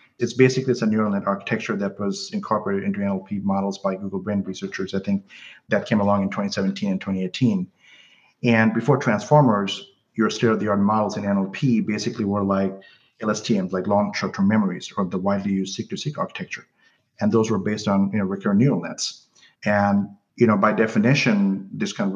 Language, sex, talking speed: English, male, 185 wpm